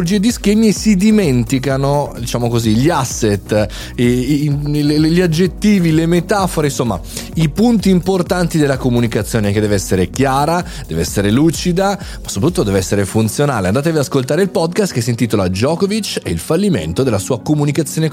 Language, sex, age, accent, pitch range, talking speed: Italian, male, 30-49, native, 120-170 Hz, 150 wpm